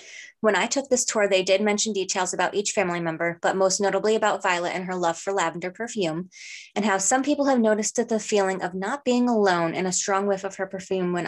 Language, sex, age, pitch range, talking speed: English, female, 20-39, 185-220 Hz, 240 wpm